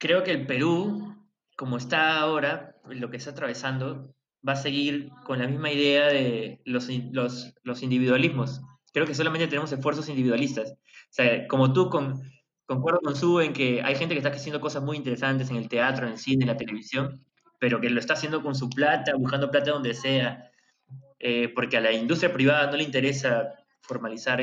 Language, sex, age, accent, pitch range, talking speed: Spanish, male, 20-39, Argentinian, 125-165 Hz, 180 wpm